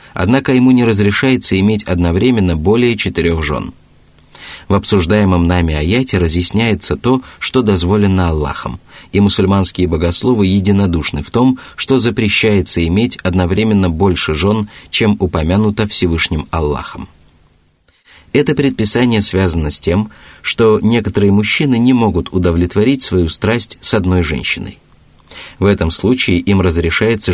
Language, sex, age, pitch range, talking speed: Russian, male, 30-49, 90-115 Hz, 120 wpm